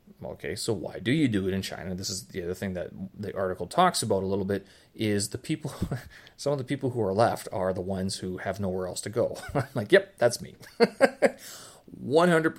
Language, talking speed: English, 225 wpm